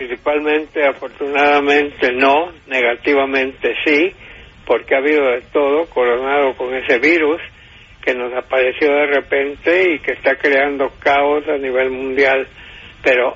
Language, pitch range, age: English, 140-160 Hz, 60-79